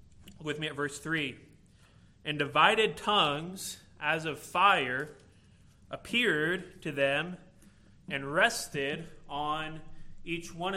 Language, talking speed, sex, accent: English, 105 wpm, male, American